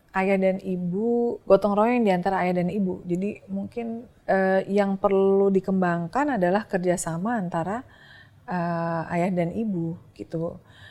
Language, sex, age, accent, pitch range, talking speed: Indonesian, female, 30-49, native, 175-205 Hz, 125 wpm